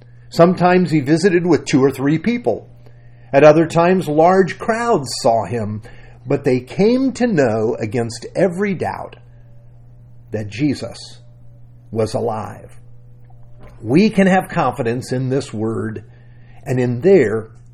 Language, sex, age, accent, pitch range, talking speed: English, male, 50-69, American, 120-155 Hz, 125 wpm